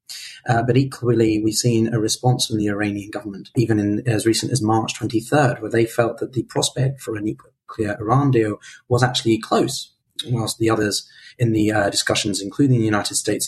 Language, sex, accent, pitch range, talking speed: English, male, British, 110-130 Hz, 195 wpm